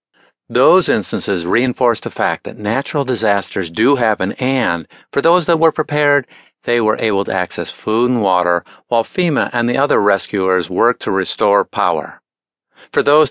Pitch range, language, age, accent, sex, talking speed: 100-145 Hz, English, 50-69, American, male, 160 wpm